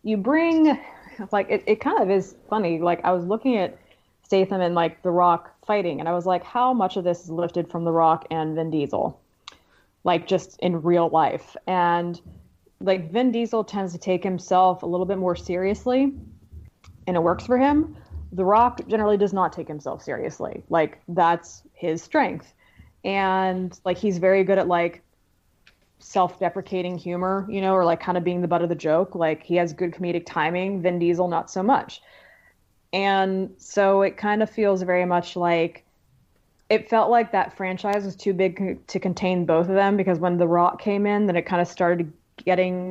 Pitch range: 170-195 Hz